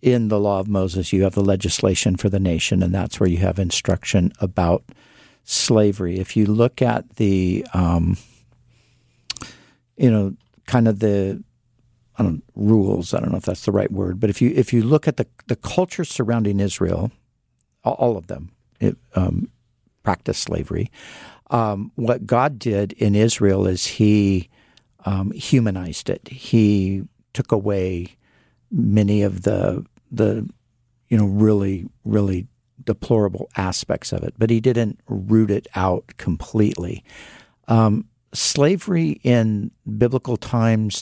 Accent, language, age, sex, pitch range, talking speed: American, English, 50-69, male, 100-125 Hz, 145 wpm